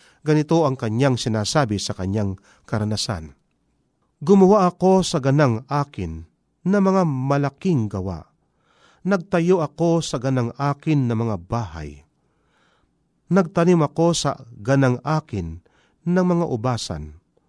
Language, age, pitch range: Filipino, 40-59, 120-170 Hz